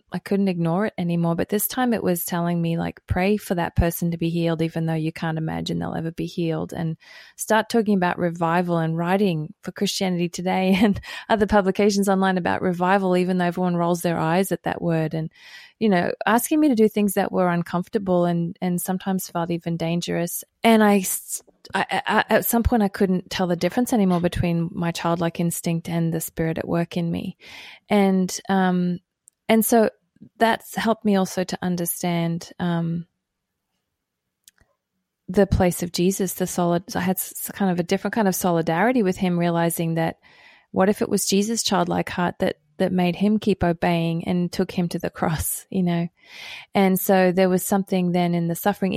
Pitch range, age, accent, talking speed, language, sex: 170-200 Hz, 20-39, Australian, 190 wpm, English, female